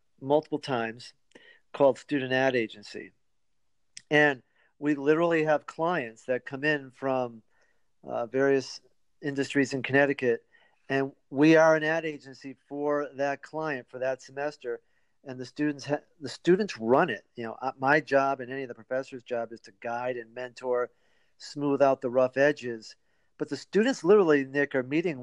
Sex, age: male, 50-69